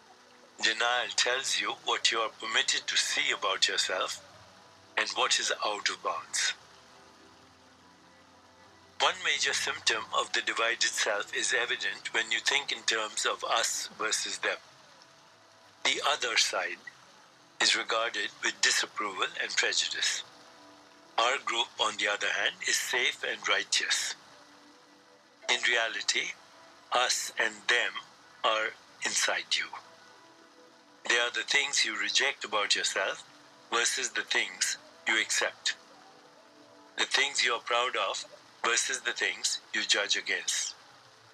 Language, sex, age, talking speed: English, male, 60-79, 125 wpm